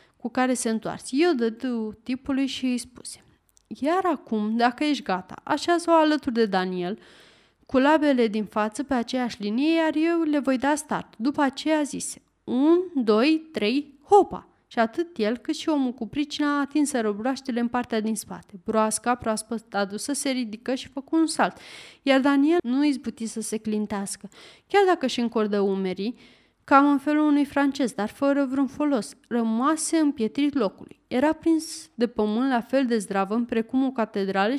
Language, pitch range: Romanian, 225-295 Hz